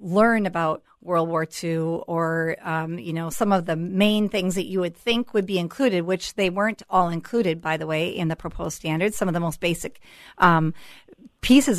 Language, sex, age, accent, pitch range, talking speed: English, female, 40-59, American, 175-225 Hz, 205 wpm